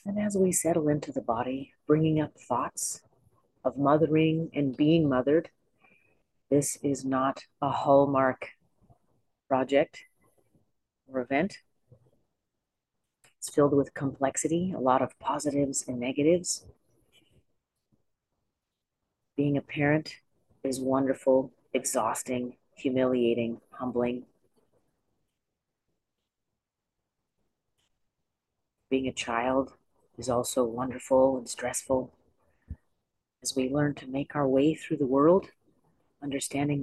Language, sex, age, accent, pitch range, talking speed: English, female, 40-59, American, 130-150 Hz, 100 wpm